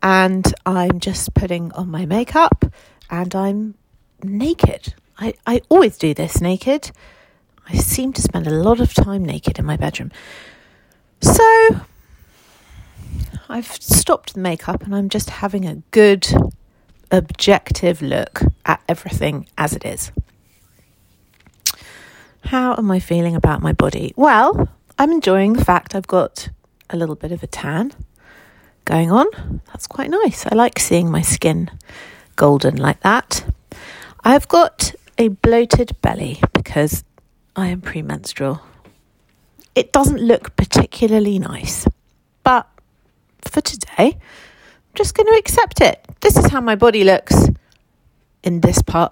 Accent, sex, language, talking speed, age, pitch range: British, female, English, 135 wpm, 40-59, 170-235 Hz